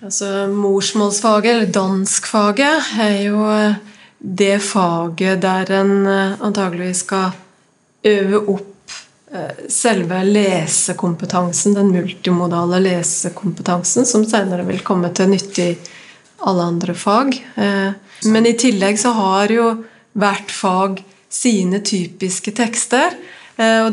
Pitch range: 190-215 Hz